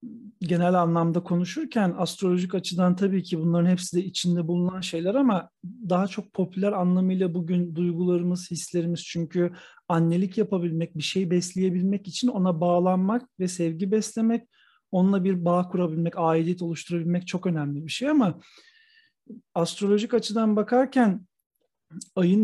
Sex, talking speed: male, 130 wpm